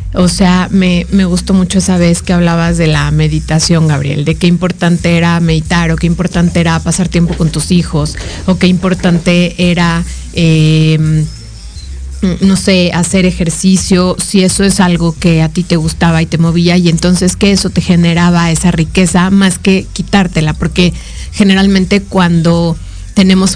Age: 30-49